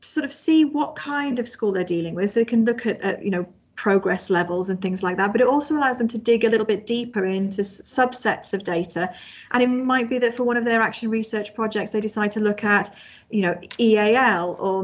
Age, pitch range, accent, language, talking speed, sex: 30-49, 195-230 Hz, British, English, 245 wpm, female